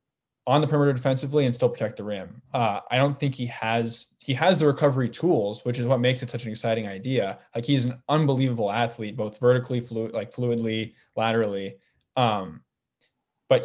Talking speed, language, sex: 185 wpm, English, male